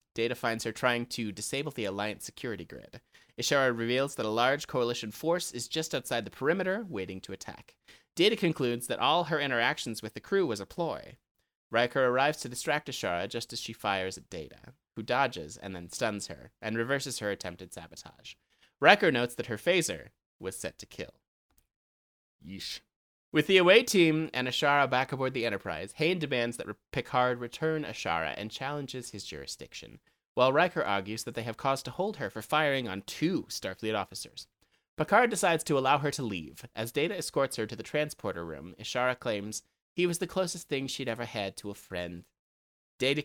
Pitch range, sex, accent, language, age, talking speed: 100-140 Hz, male, American, English, 30-49, 185 wpm